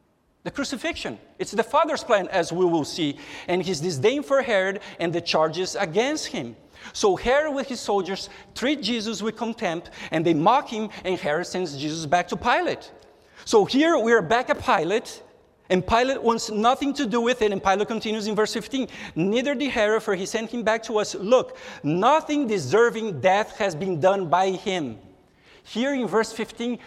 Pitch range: 190-260 Hz